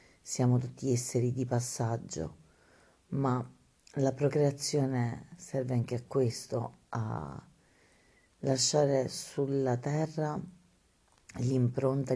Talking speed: 85 wpm